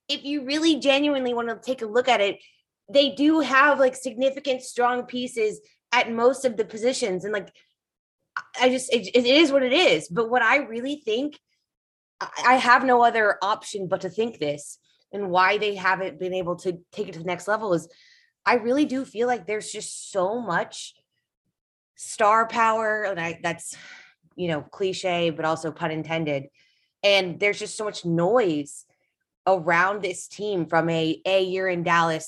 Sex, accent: female, American